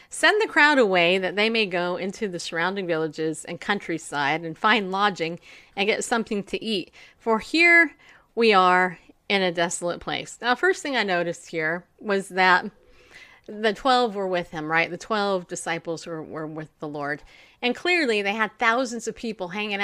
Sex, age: female, 30-49